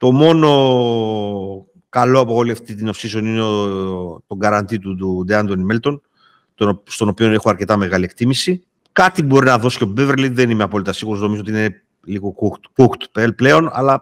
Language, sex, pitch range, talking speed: Greek, male, 110-135 Hz, 170 wpm